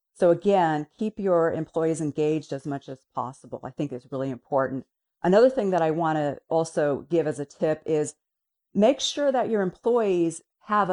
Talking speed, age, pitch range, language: 180 wpm, 40-59, 160-205 Hz, English